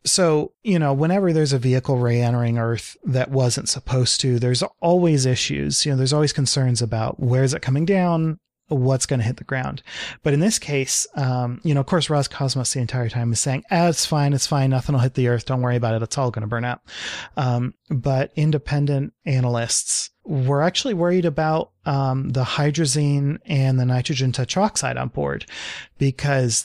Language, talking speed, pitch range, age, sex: English, 195 wpm, 120-150 Hz, 30-49, male